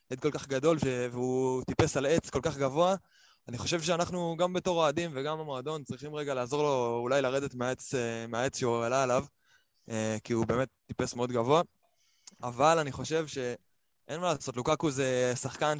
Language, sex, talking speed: Hebrew, male, 170 wpm